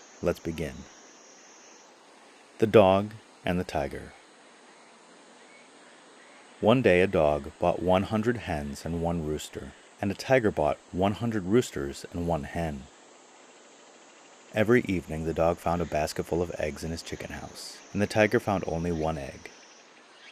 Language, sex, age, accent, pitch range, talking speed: English, male, 30-49, American, 80-105 Hz, 140 wpm